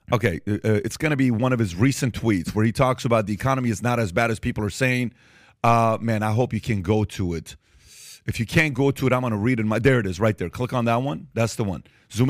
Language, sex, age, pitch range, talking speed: English, male, 40-59, 115-140 Hz, 285 wpm